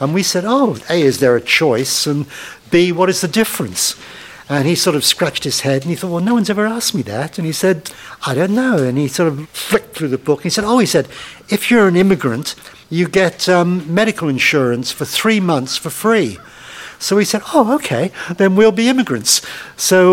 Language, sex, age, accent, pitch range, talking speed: English, male, 50-69, British, 135-190 Hz, 225 wpm